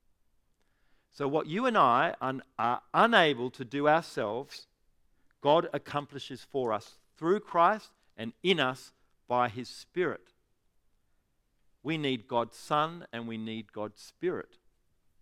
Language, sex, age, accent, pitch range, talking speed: English, male, 50-69, Australian, 125-160 Hz, 120 wpm